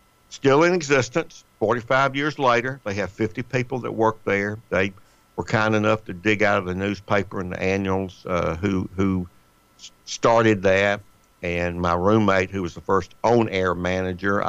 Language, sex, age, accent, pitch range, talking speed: English, male, 60-79, American, 90-110 Hz, 170 wpm